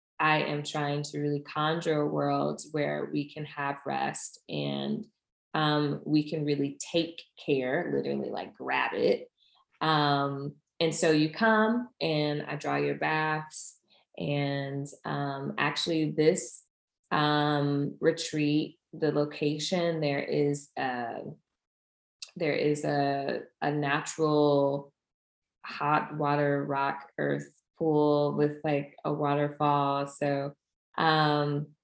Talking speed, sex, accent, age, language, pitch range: 115 wpm, female, American, 20-39, English, 140-155 Hz